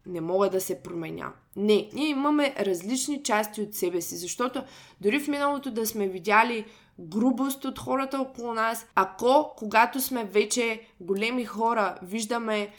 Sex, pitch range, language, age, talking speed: female, 195-235 Hz, Bulgarian, 20-39, 150 wpm